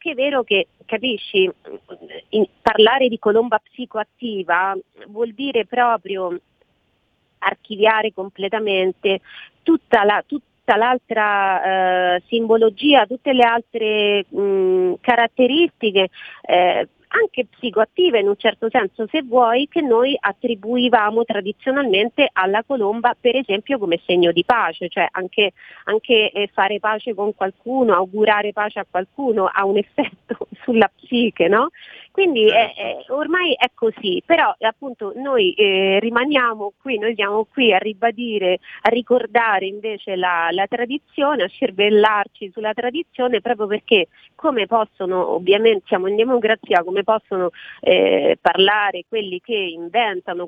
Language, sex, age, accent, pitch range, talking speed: Italian, female, 40-59, native, 195-245 Hz, 125 wpm